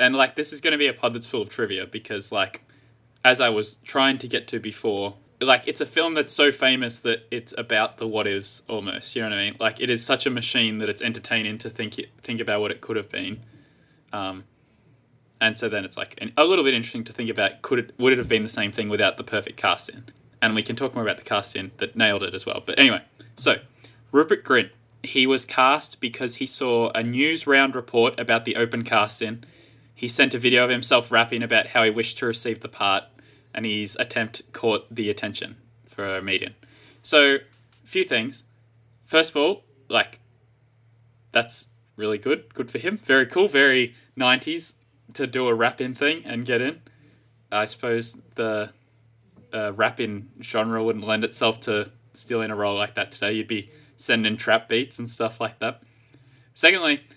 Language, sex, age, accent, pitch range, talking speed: English, male, 20-39, Australian, 115-130 Hz, 205 wpm